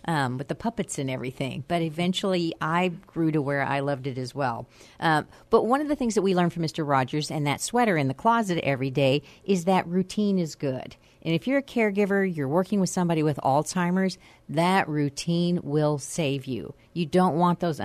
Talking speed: 210 wpm